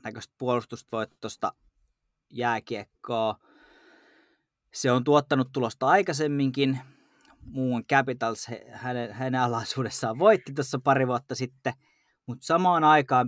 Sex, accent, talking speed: male, native, 95 wpm